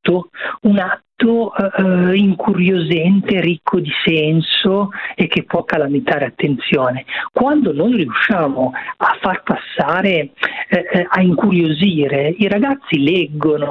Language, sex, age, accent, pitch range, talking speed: Italian, male, 40-59, native, 140-210 Hz, 95 wpm